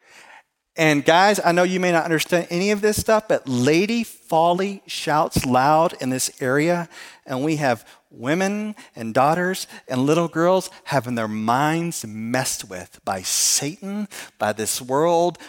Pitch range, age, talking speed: 130-180 Hz, 40-59, 150 wpm